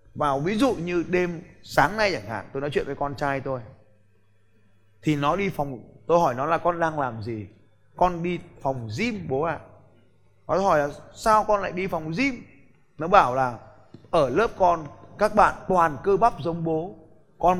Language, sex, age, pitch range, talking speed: Vietnamese, male, 20-39, 135-215 Hz, 200 wpm